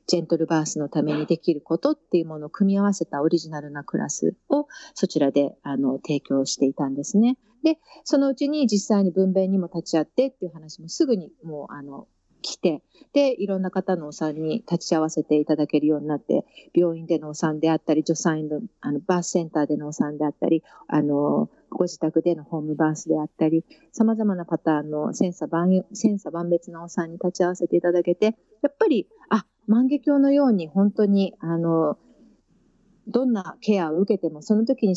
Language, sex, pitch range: Japanese, female, 155-210 Hz